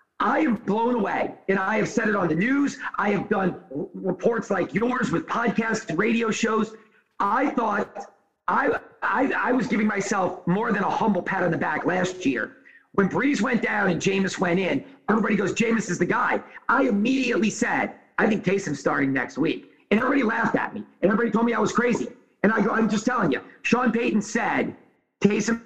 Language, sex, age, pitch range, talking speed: English, male, 40-59, 195-235 Hz, 200 wpm